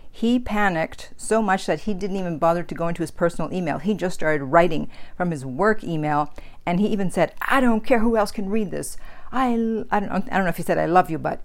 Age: 50-69